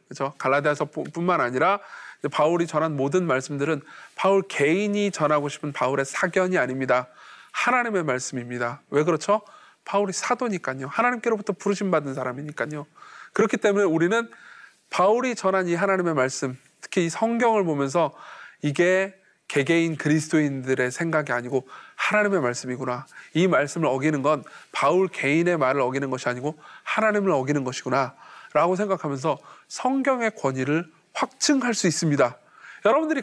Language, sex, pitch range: Korean, male, 145-215 Hz